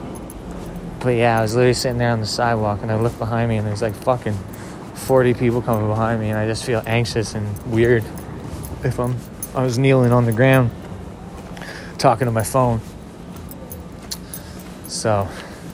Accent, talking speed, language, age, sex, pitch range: American, 170 wpm, English, 20-39, male, 110-120 Hz